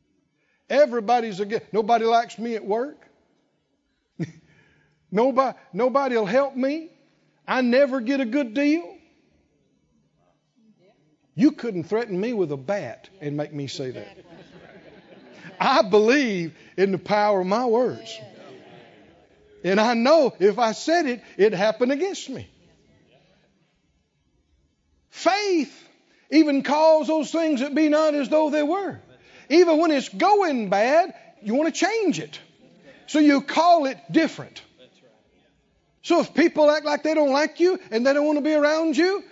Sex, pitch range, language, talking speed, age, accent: male, 230-330 Hz, English, 140 wpm, 60-79, American